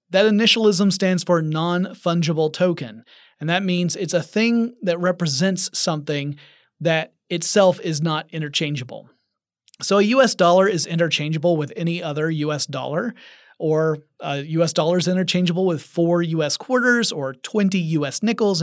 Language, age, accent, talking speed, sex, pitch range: English, 30-49, American, 145 wpm, male, 160-200 Hz